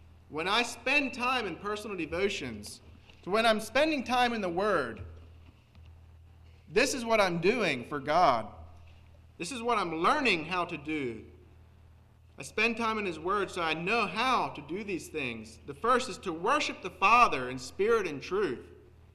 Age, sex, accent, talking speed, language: 40-59, male, American, 170 wpm, English